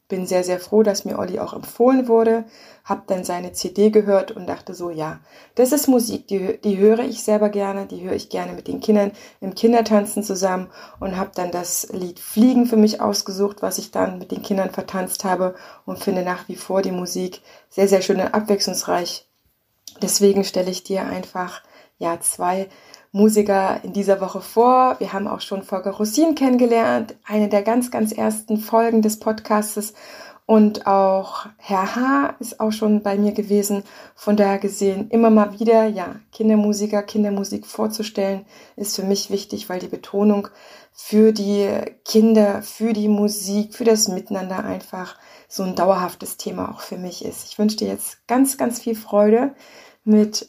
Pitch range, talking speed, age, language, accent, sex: 195-225 Hz, 175 wpm, 20-39, German, German, female